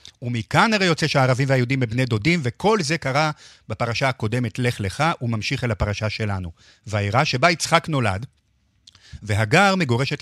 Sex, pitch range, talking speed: male, 110-140 Hz, 140 wpm